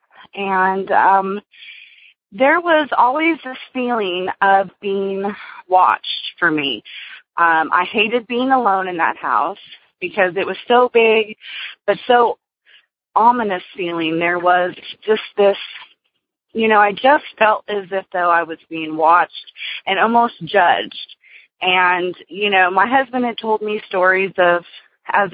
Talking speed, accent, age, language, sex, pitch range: 140 wpm, American, 30-49, English, female, 180-215 Hz